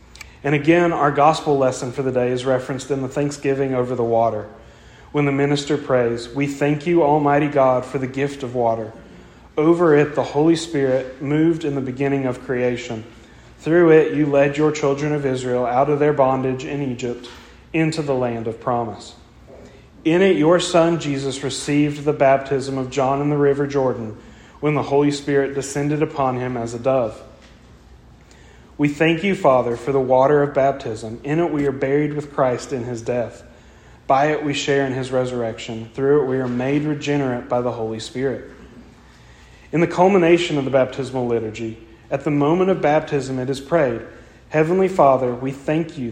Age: 40-59